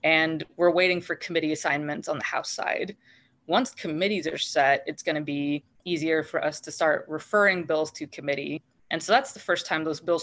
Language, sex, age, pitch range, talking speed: English, female, 20-39, 155-180 Hz, 200 wpm